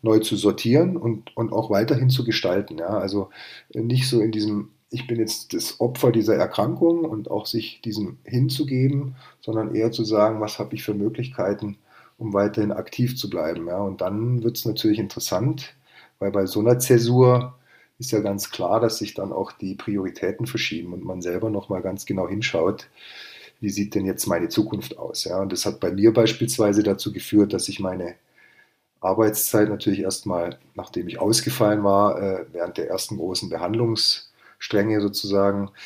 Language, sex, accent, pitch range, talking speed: German, male, German, 100-115 Hz, 165 wpm